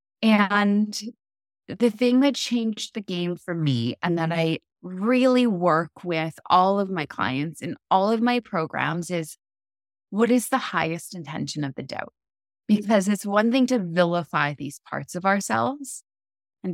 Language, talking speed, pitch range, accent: English, 160 wpm, 155-205 Hz, American